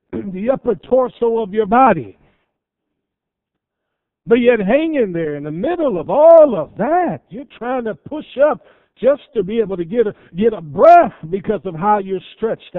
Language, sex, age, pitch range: English, male, 60-79, 130-190 Hz